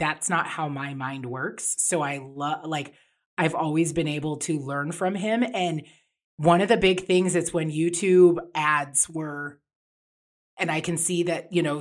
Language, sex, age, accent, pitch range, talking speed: English, female, 30-49, American, 170-230 Hz, 185 wpm